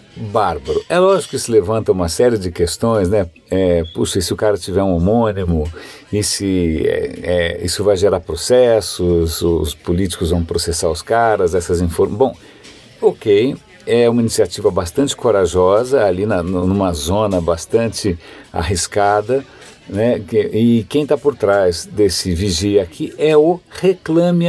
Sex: male